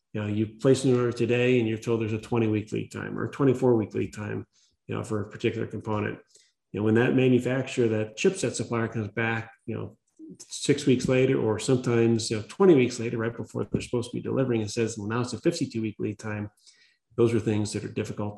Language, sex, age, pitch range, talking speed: English, male, 30-49, 105-120 Hz, 230 wpm